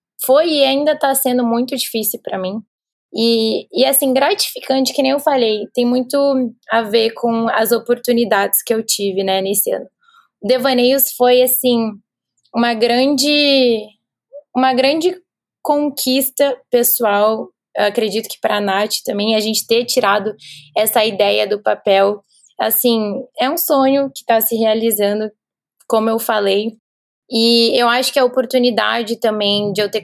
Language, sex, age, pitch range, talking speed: Portuguese, female, 20-39, 215-260 Hz, 150 wpm